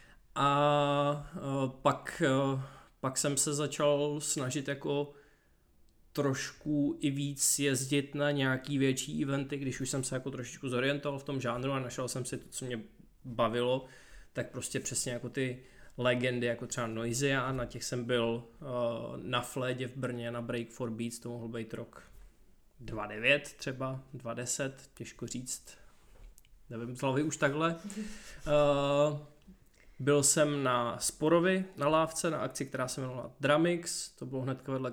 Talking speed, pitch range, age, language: 155 wpm, 125-145 Hz, 20-39, Czech